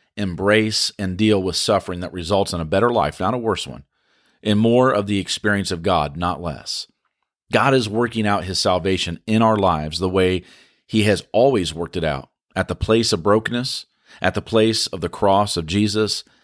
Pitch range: 90-110 Hz